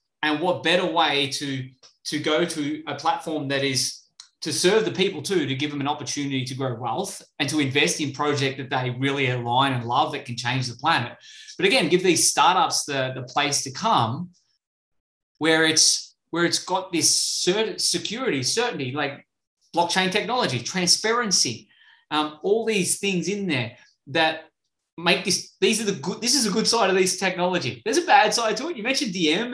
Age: 20-39